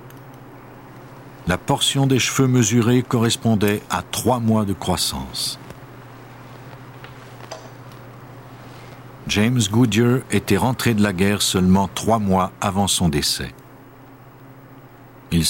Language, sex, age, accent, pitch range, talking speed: French, male, 60-79, French, 95-130 Hz, 95 wpm